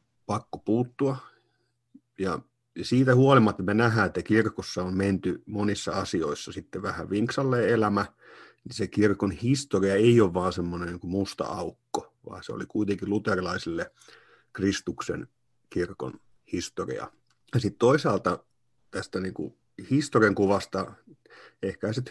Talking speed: 120 wpm